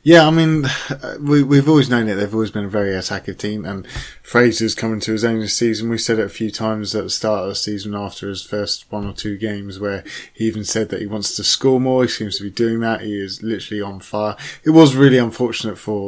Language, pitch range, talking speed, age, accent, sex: English, 100-125 Hz, 255 wpm, 20-39, British, male